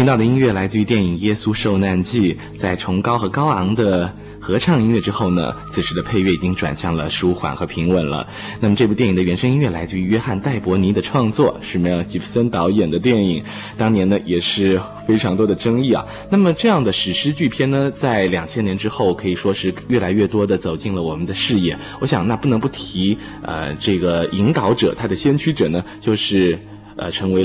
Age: 20-39